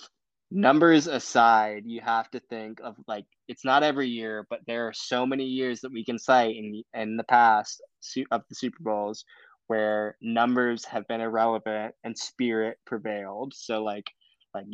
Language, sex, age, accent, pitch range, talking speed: English, male, 10-29, American, 105-120 Hz, 170 wpm